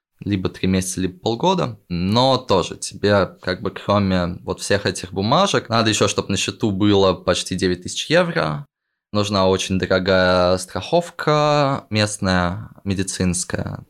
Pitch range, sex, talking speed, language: 95-120 Hz, male, 130 wpm, Russian